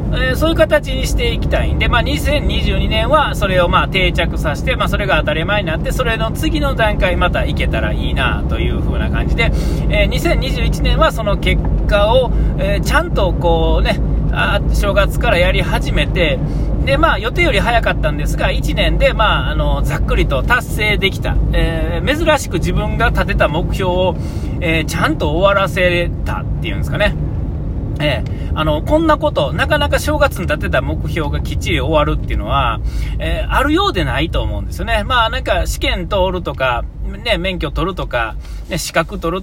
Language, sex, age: Japanese, male, 40-59